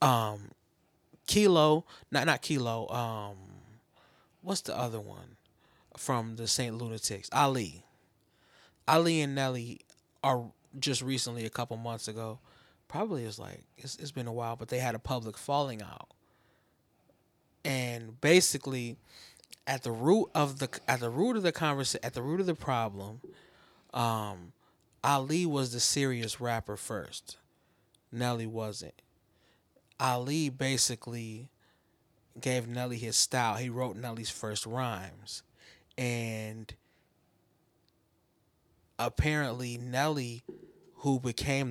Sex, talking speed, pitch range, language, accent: male, 120 wpm, 110-135 Hz, English, American